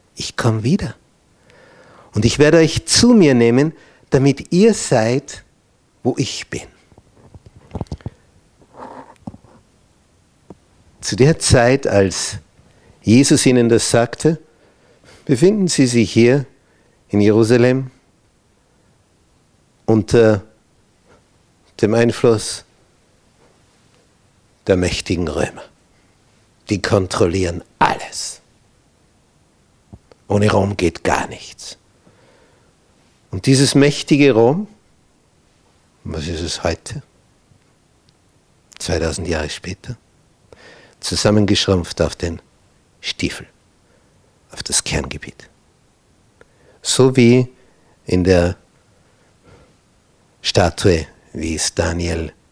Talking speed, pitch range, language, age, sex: 80 wpm, 90-130 Hz, German, 60-79, male